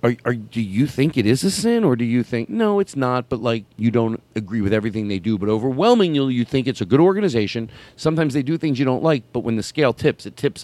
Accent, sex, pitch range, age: American, male, 110-155 Hz, 40-59